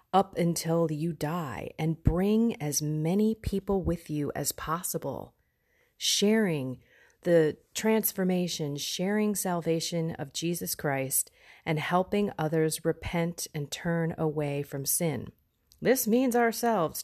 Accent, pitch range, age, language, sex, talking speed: American, 150-190 Hz, 40-59, English, female, 115 wpm